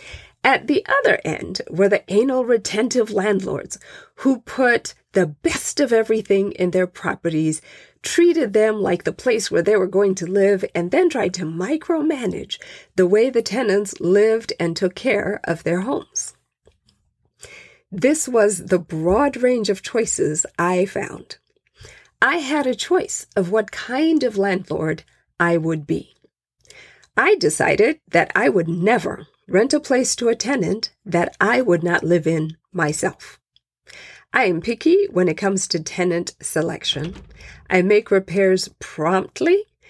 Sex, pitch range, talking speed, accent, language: female, 180-260 Hz, 145 wpm, American, English